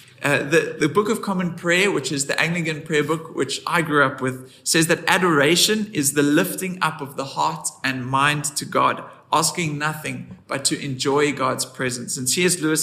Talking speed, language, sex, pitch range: 195 wpm, English, male, 140-170 Hz